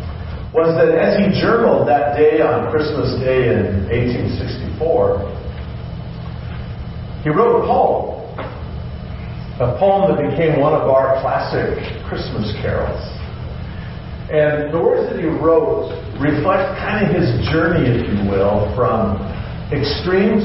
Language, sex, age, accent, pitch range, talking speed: English, male, 50-69, American, 95-145 Hz, 125 wpm